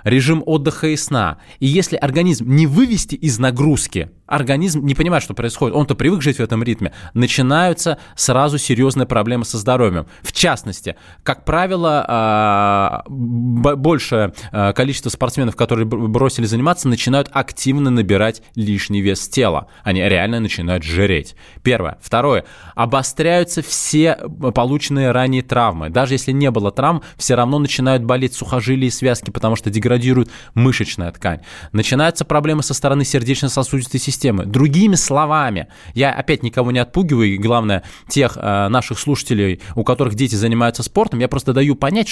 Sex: male